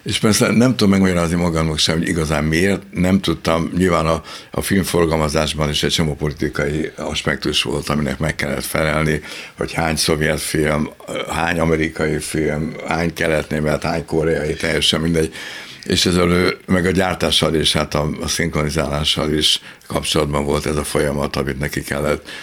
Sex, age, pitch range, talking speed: male, 60-79, 75-85 Hz, 150 wpm